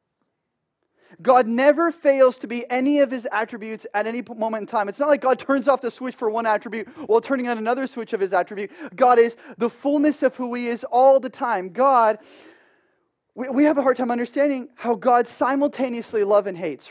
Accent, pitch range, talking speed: American, 225-275 Hz, 210 wpm